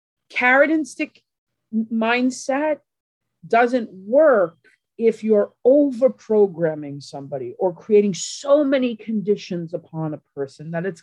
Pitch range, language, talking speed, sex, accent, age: 150-210 Hz, English, 115 wpm, female, American, 50-69